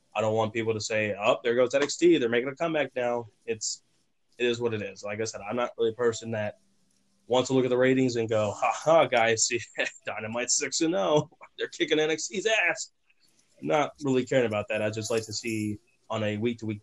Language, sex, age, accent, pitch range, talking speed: English, male, 20-39, American, 110-135 Hz, 220 wpm